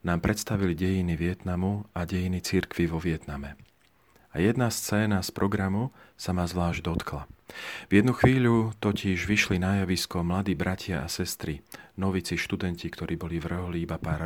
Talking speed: 150 wpm